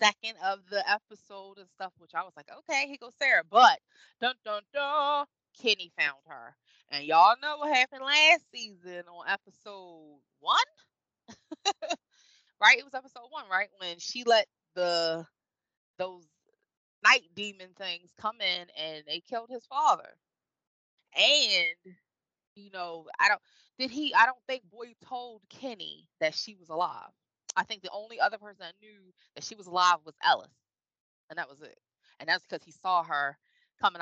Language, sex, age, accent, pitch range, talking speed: English, female, 20-39, American, 170-255 Hz, 165 wpm